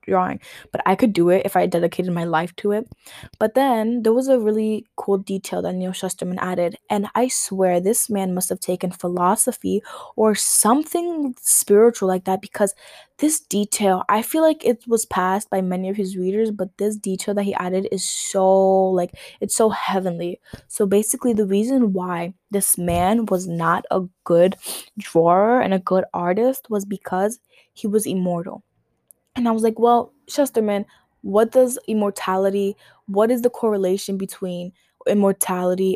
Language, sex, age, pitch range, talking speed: English, female, 10-29, 185-225 Hz, 170 wpm